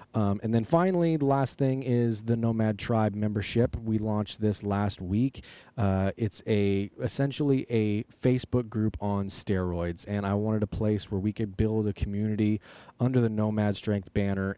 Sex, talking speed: male, 175 wpm